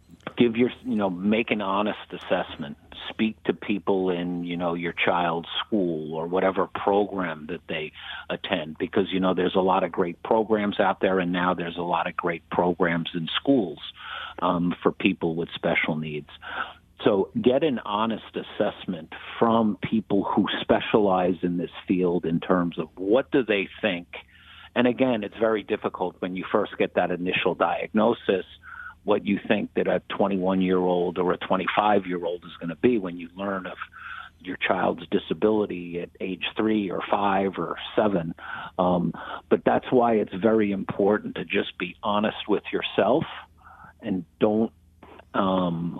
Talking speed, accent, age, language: 160 wpm, American, 50-69, English